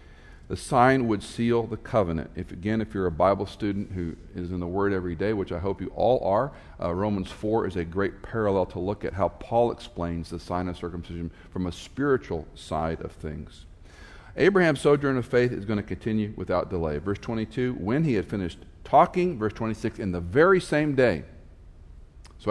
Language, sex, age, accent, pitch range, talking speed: English, male, 50-69, American, 85-105 Hz, 195 wpm